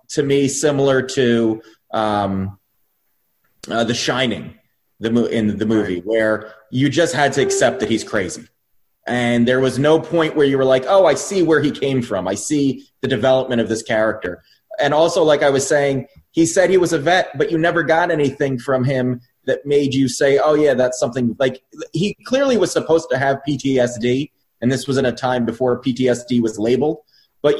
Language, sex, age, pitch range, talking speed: English, male, 30-49, 120-155 Hz, 200 wpm